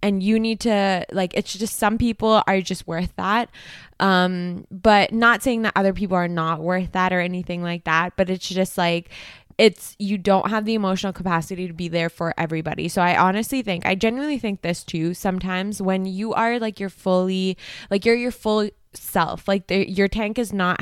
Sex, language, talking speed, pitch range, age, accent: female, English, 200 wpm, 175-205 Hz, 20-39, American